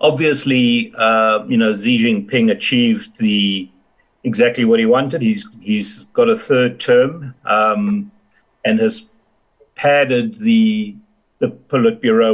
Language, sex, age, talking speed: English, male, 60-79, 120 wpm